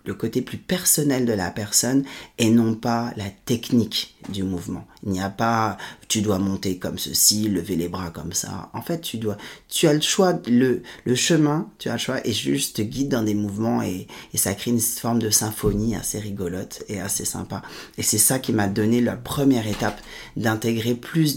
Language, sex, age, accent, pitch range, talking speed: French, male, 30-49, French, 100-120 Hz, 200 wpm